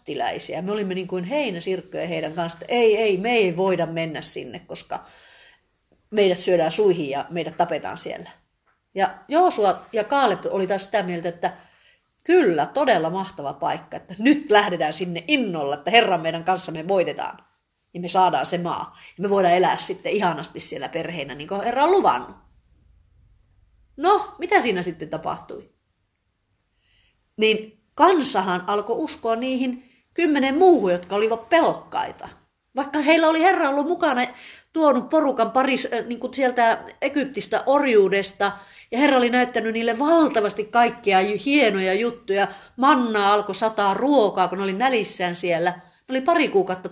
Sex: female